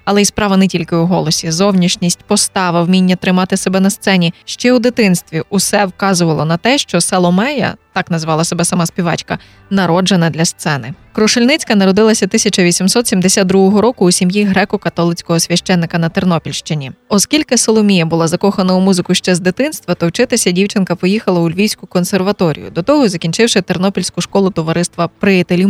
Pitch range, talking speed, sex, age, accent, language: 175-205 Hz, 150 wpm, female, 20-39, native, Ukrainian